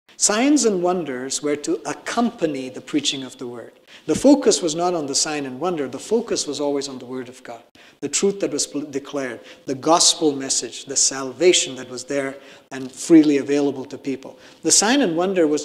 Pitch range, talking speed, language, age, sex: 140-200 Hz, 200 wpm, English, 50-69, male